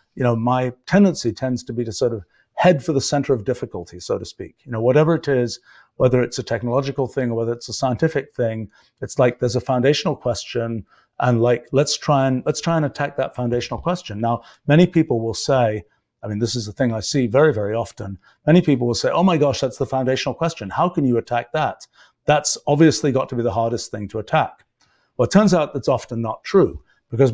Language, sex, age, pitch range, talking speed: English, male, 50-69, 120-145 Hz, 230 wpm